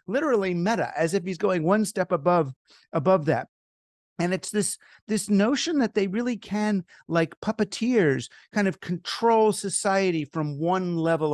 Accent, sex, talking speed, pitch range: American, male, 155 wpm, 145-195 Hz